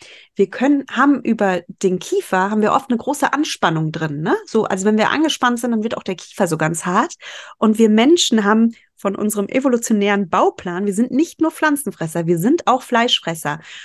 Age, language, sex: 30-49, German, female